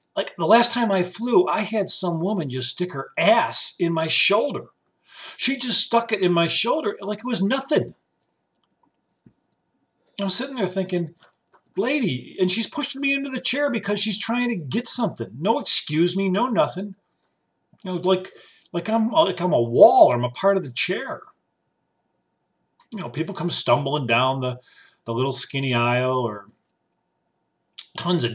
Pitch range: 130-200 Hz